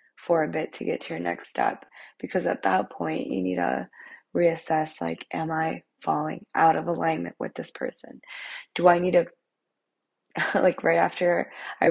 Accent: American